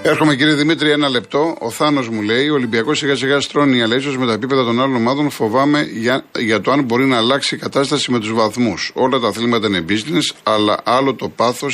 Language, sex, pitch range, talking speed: Greek, male, 115-140 Hz, 225 wpm